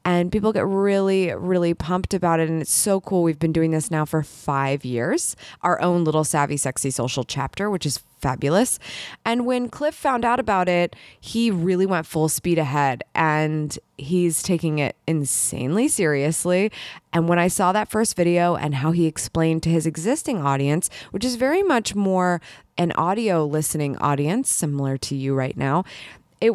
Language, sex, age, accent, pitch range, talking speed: English, female, 20-39, American, 155-205 Hz, 180 wpm